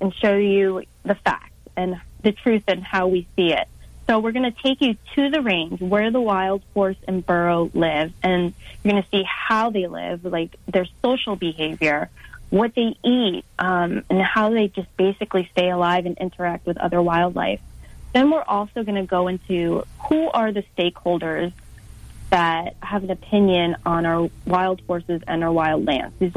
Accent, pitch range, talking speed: American, 175-215 Hz, 185 wpm